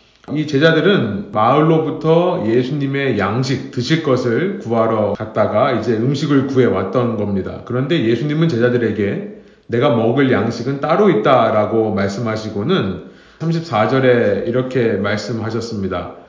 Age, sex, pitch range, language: 30-49, male, 115-160 Hz, Korean